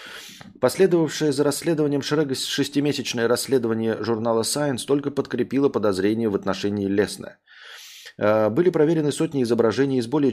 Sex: male